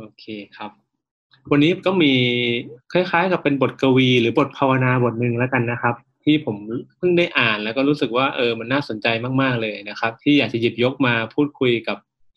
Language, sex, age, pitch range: Thai, male, 20-39, 115-140 Hz